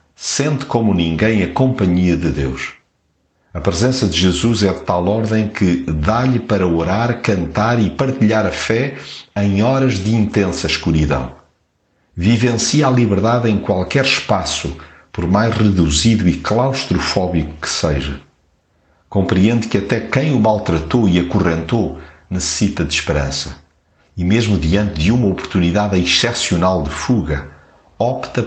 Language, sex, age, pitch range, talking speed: Portuguese, male, 50-69, 80-110 Hz, 135 wpm